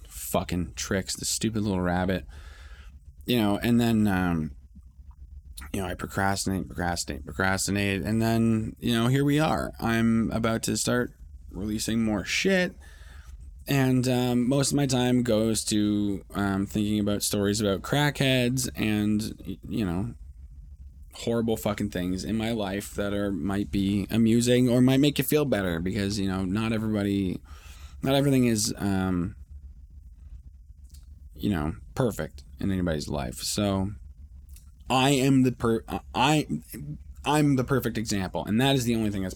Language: English